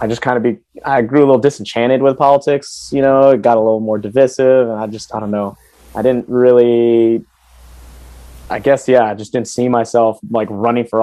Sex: male